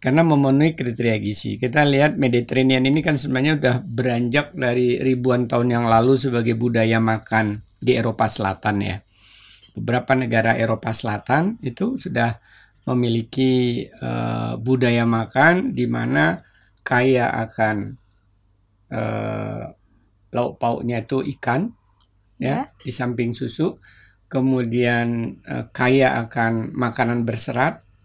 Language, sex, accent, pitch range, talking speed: Indonesian, male, native, 105-130 Hz, 115 wpm